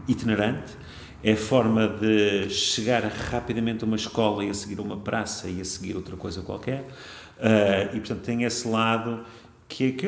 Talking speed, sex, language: 180 wpm, male, Portuguese